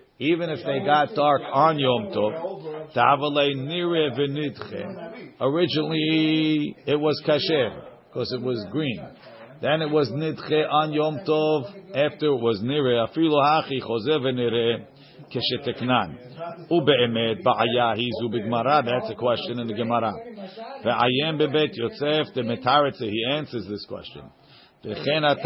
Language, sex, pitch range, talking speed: English, male, 120-155 Hz, 125 wpm